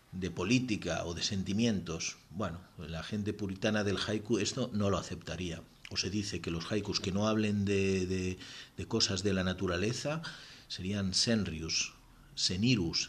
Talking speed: 155 wpm